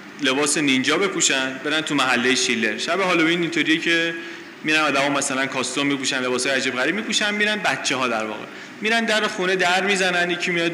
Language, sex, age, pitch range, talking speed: Persian, male, 30-49, 150-230 Hz, 175 wpm